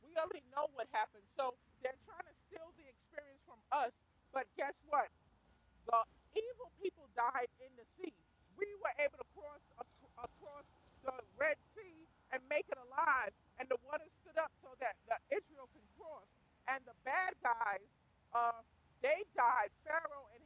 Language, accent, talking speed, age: English, American, 165 wpm, 40-59